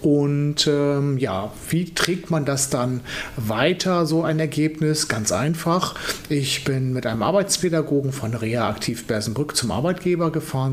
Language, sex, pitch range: German, male, 125-160 Hz